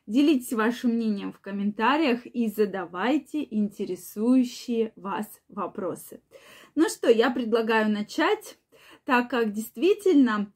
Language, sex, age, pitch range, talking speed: Russian, female, 20-39, 220-295 Hz, 100 wpm